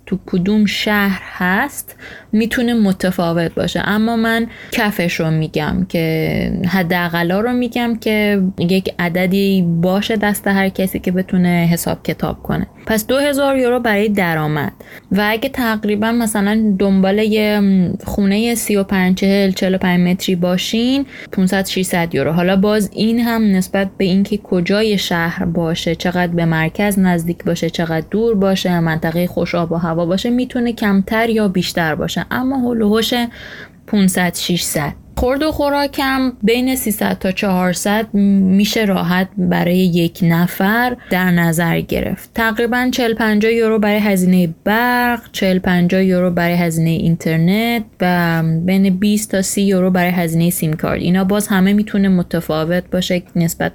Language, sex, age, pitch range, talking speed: Persian, female, 20-39, 175-215 Hz, 140 wpm